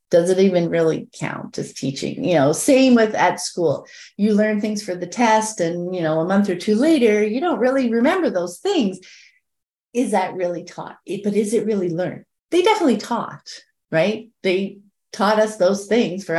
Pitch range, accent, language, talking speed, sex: 175-220 Hz, American, English, 190 wpm, female